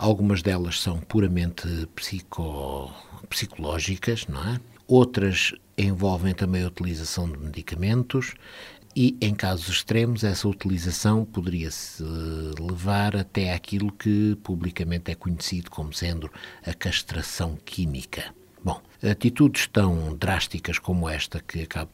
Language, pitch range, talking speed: Portuguese, 85-115 Hz, 105 wpm